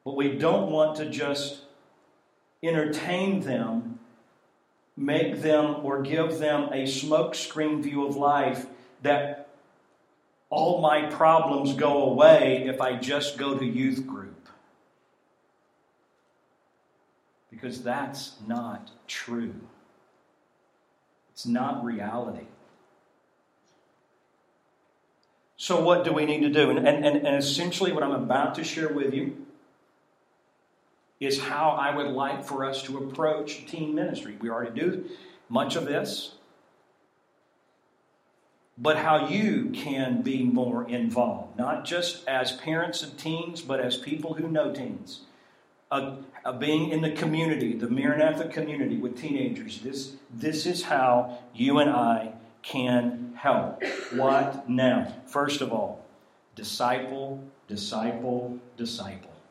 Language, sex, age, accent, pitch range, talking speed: English, male, 50-69, American, 130-160 Hz, 120 wpm